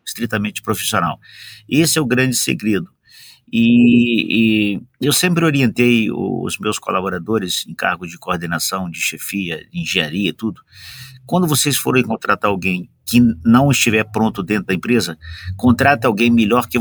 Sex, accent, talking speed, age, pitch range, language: male, Brazilian, 145 wpm, 50-69, 95-120 Hz, Portuguese